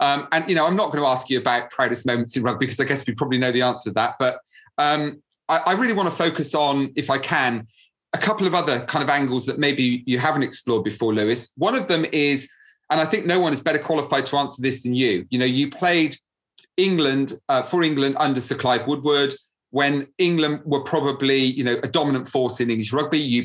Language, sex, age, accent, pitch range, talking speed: English, male, 30-49, British, 130-150 Hz, 240 wpm